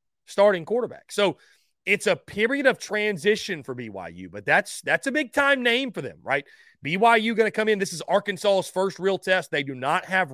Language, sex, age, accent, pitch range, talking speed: English, male, 30-49, American, 145-185 Hz, 205 wpm